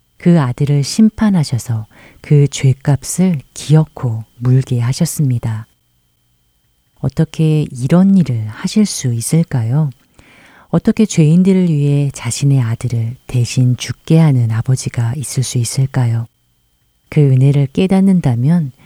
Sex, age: female, 40-59